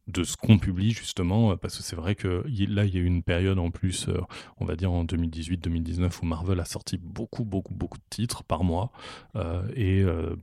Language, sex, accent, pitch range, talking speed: French, male, French, 85-100 Hz, 220 wpm